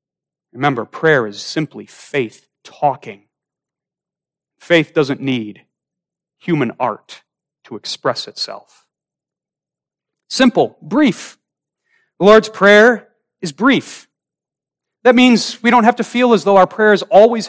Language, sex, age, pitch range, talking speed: English, male, 40-59, 160-220 Hz, 115 wpm